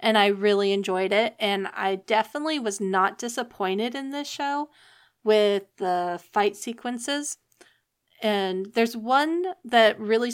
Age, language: 30-49, English